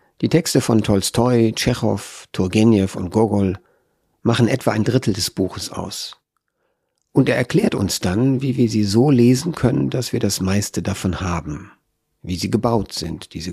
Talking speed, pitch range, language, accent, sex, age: 165 wpm, 95-120 Hz, German, German, male, 50-69